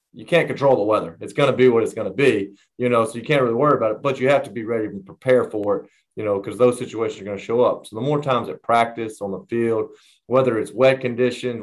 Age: 30-49